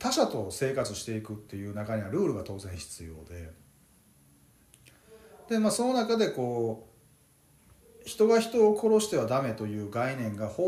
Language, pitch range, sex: Japanese, 100-165 Hz, male